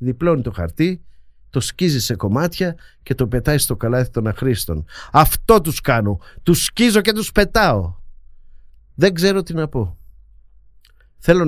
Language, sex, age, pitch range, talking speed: Greek, male, 50-69, 100-150 Hz, 145 wpm